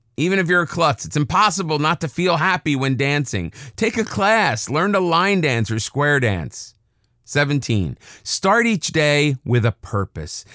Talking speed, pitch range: 170 wpm, 110-150 Hz